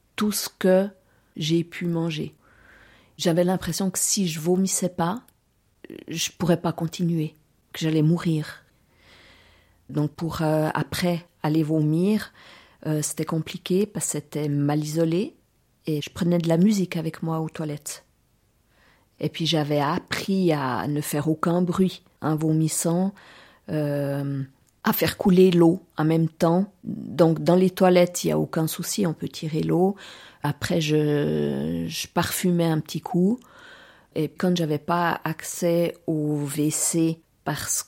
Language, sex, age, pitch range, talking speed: French, female, 40-59, 150-170 Hz, 145 wpm